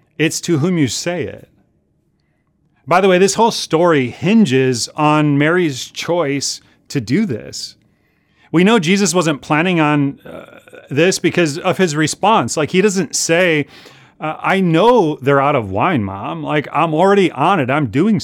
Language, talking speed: English, 165 wpm